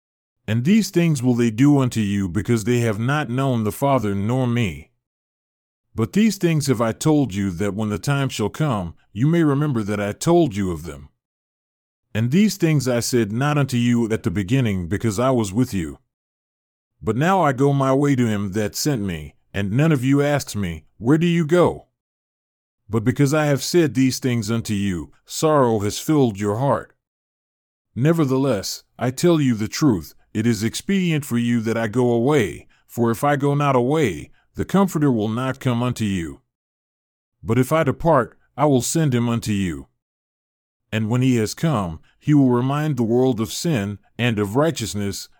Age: 40-59